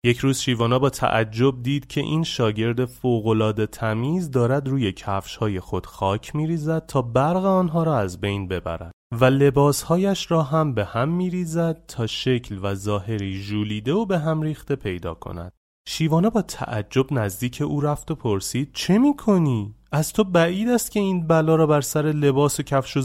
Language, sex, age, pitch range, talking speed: Persian, male, 30-49, 110-145 Hz, 170 wpm